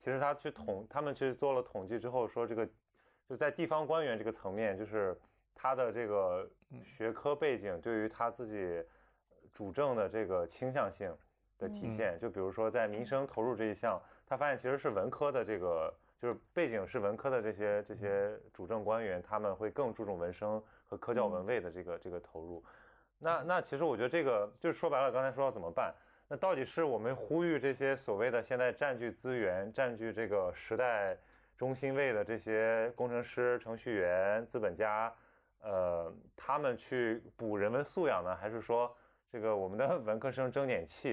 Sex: male